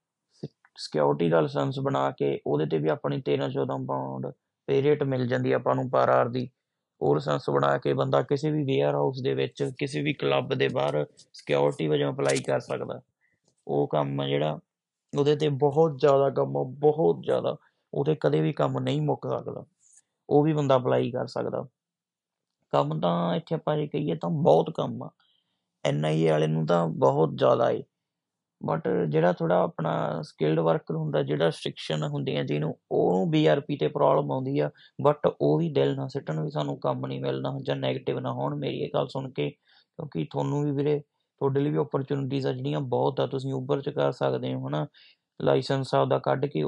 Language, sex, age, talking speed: Punjabi, male, 30-49, 170 wpm